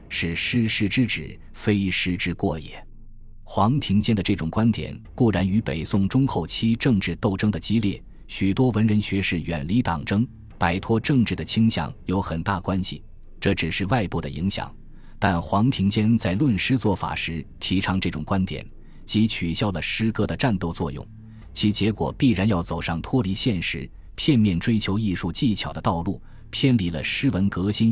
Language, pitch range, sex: Chinese, 85-110 Hz, male